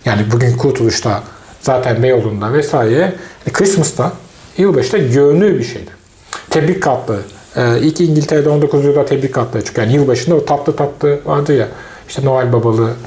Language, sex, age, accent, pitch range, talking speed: Turkish, male, 40-59, native, 125-170 Hz, 150 wpm